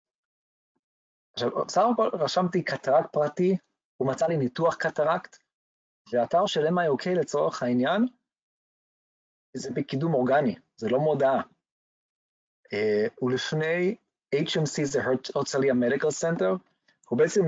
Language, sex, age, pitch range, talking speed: Hebrew, male, 40-59, 125-175 Hz, 115 wpm